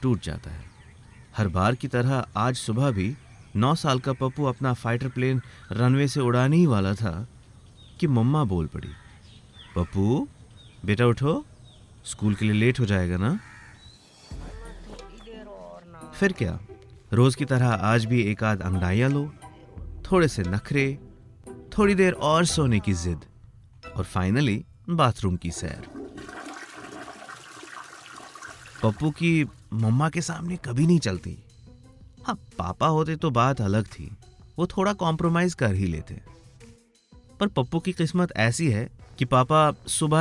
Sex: male